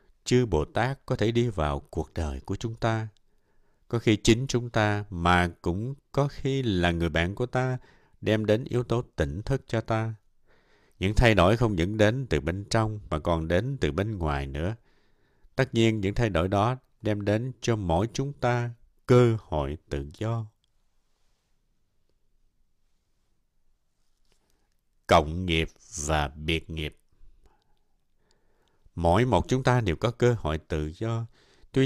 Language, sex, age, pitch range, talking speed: Vietnamese, male, 60-79, 85-125 Hz, 155 wpm